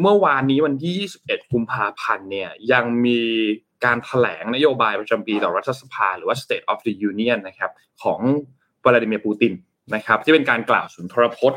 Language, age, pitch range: Thai, 20-39, 120-150 Hz